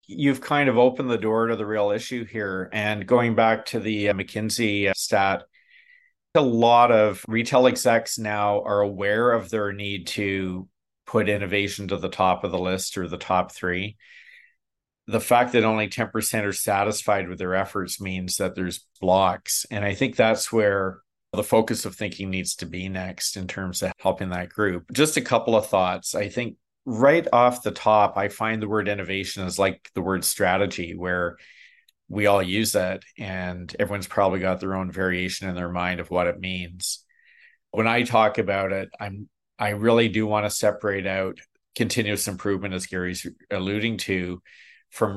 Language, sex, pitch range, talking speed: English, male, 95-110 Hz, 180 wpm